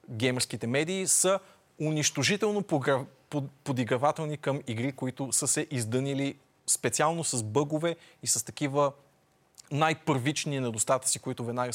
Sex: male